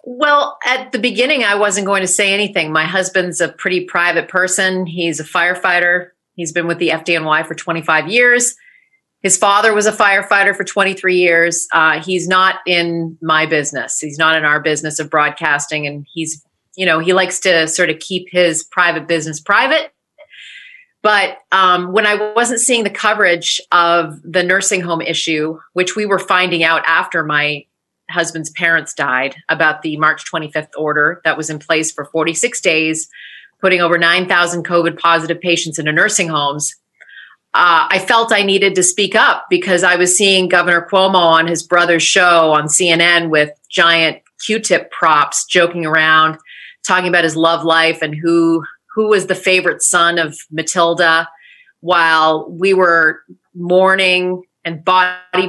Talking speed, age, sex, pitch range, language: 165 wpm, 30-49, female, 160-190 Hz, English